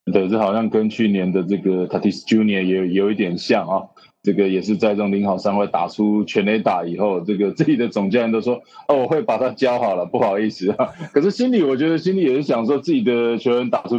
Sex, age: male, 20-39